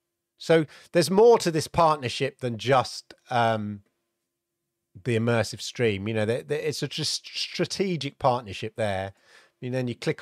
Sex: male